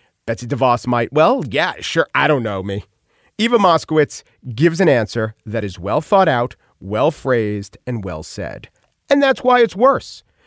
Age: 40-59